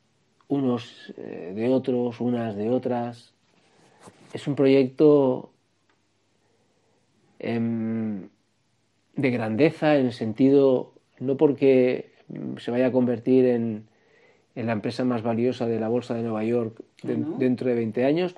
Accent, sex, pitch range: Spanish, male, 115-140 Hz